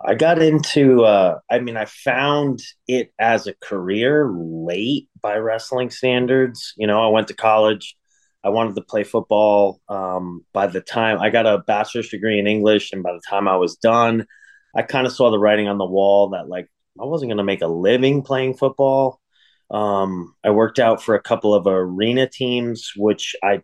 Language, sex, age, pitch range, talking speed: English, male, 30-49, 95-120 Hz, 195 wpm